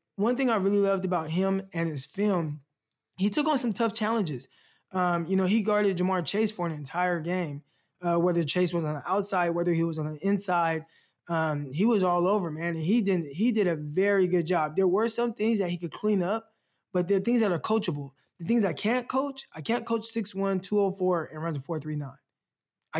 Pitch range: 170-210 Hz